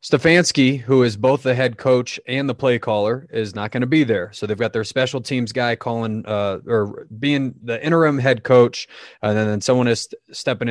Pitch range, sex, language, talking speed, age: 110-130 Hz, male, English, 200 wpm, 20-39